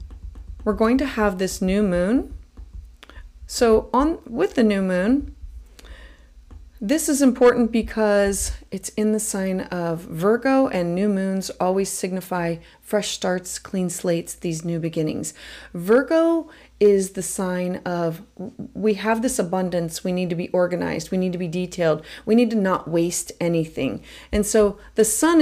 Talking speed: 150 wpm